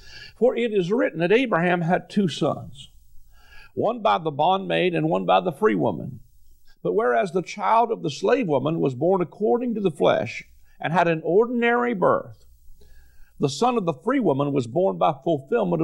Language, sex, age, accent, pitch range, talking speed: English, male, 50-69, American, 135-205 Hz, 180 wpm